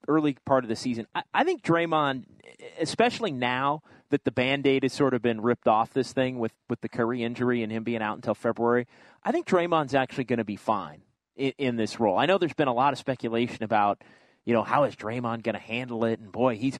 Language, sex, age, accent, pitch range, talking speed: English, male, 30-49, American, 120-150 Hz, 230 wpm